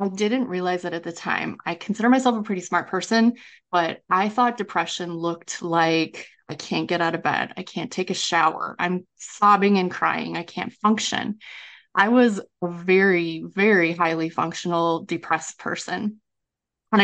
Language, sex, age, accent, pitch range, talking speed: English, female, 20-39, American, 170-200 Hz, 170 wpm